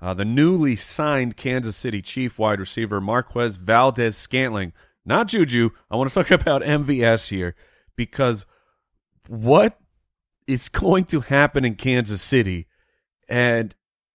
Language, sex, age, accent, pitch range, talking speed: English, male, 30-49, American, 105-135 Hz, 130 wpm